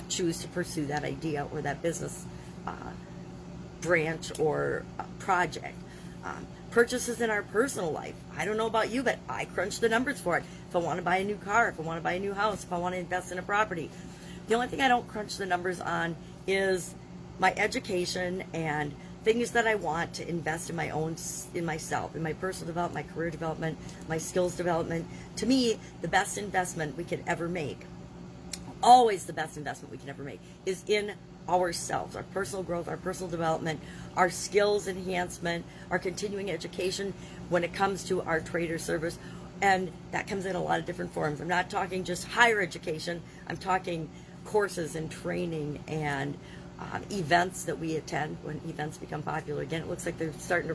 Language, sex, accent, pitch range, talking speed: English, female, American, 160-195 Hz, 195 wpm